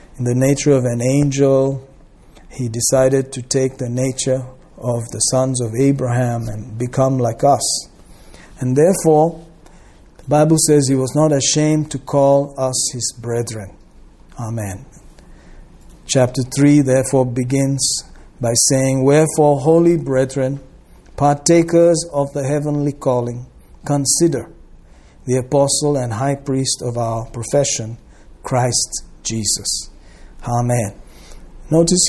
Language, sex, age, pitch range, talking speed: English, male, 50-69, 125-145 Hz, 120 wpm